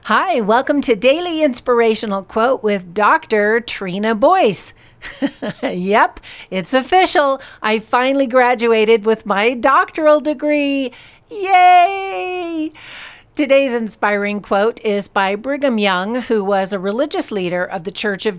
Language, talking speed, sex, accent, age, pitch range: English, 120 wpm, female, American, 50-69, 190-250 Hz